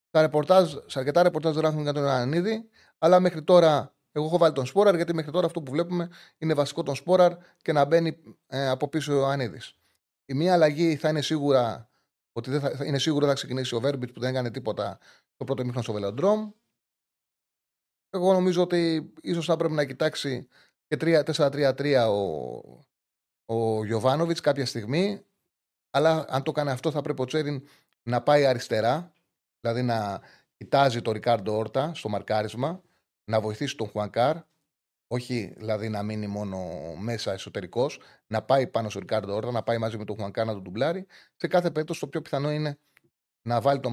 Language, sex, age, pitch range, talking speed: Greek, male, 30-49, 115-155 Hz, 175 wpm